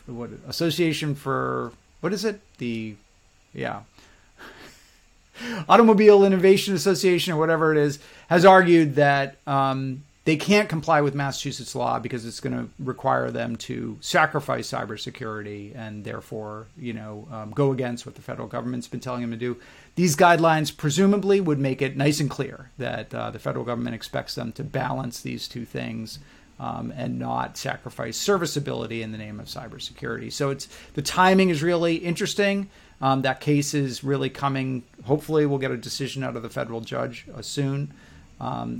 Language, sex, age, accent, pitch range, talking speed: English, male, 30-49, American, 115-150 Hz, 165 wpm